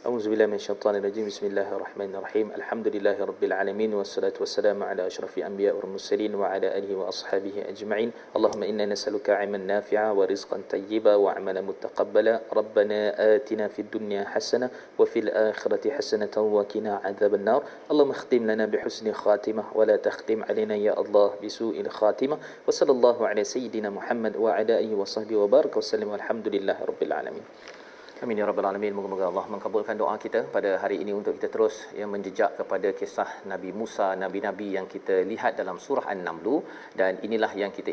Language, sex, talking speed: Malayalam, male, 135 wpm